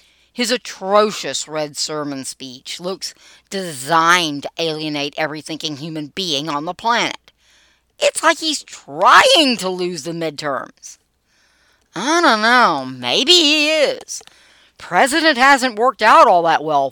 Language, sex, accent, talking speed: English, female, American, 130 wpm